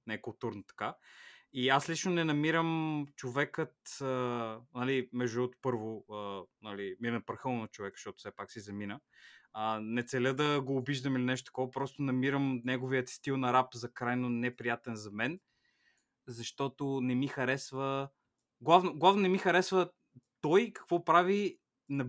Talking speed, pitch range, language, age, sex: 160 wpm, 120-145 Hz, Bulgarian, 20-39, male